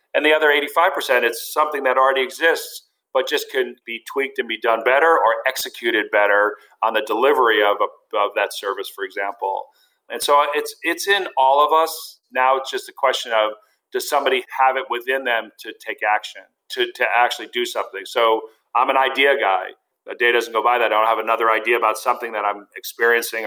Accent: American